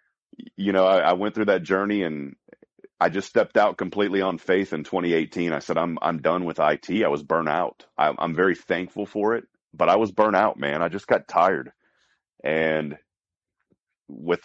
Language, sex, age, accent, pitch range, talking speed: English, male, 40-59, American, 75-95 Hz, 195 wpm